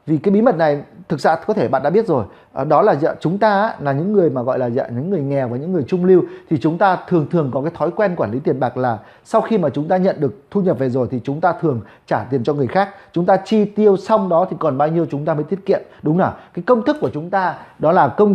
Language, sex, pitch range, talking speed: Vietnamese, male, 155-210 Hz, 300 wpm